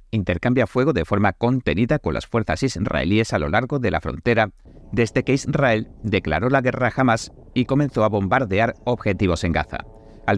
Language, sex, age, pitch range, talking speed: Spanish, male, 50-69, 95-130 Hz, 180 wpm